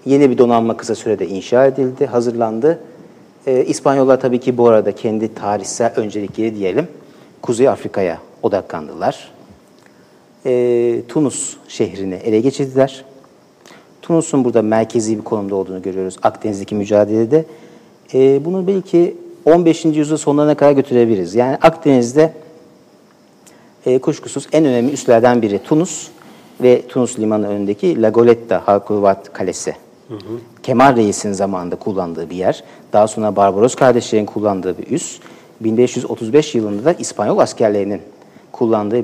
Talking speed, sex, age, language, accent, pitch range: 120 wpm, male, 60-79, Turkish, native, 105-135 Hz